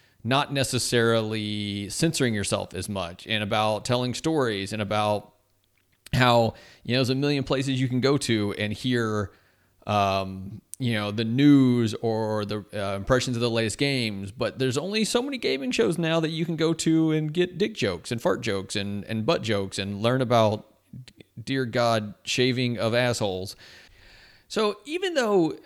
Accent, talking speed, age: American, 170 wpm, 30-49